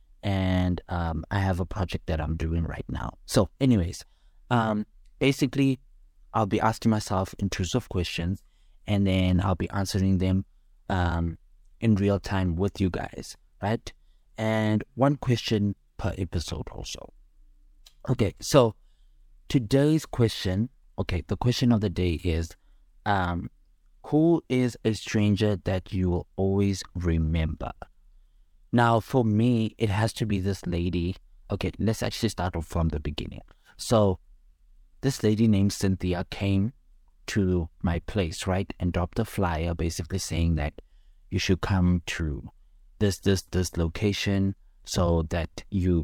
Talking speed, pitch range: 140 wpm, 85-105 Hz